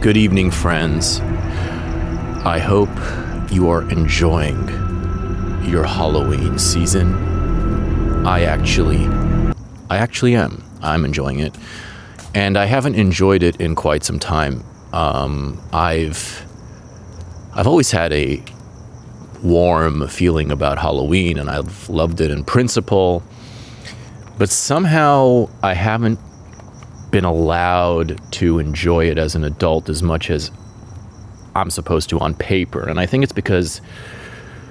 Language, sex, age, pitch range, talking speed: English, male, 30-49, 85-110 Hz, 120 wpm